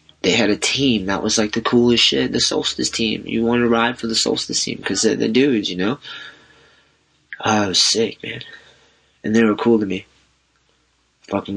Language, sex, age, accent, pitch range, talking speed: English, male, 20-39, American, 95-120 Hz, 195 wpm